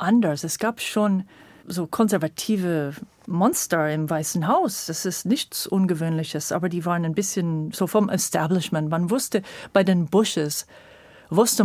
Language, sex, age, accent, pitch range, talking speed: German, female, 40-59, German, 175-225 Hz, 145 wpm